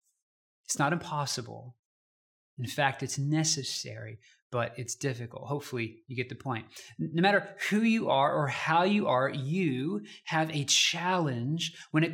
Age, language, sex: 20-39, English, male